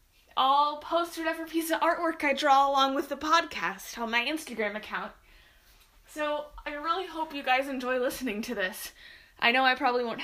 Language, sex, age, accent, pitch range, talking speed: English, female, 10-29, American, 230-315 Hz, 180 wpm